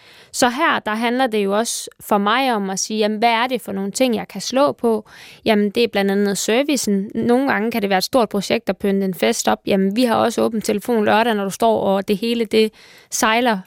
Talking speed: 250 wpm